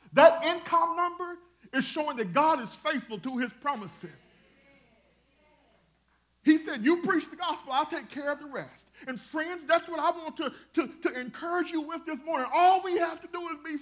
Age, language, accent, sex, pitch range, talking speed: 40-59, English, American, male, 220-320 Hz, 190 wpm